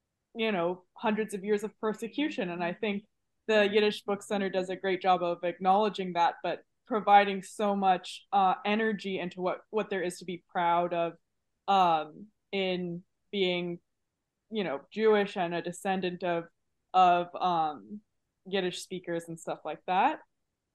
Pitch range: 185-220 Hz